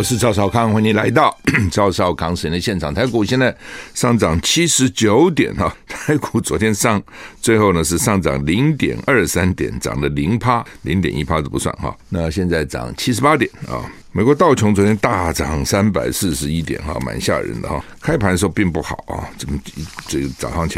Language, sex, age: Chinese, male, 60-79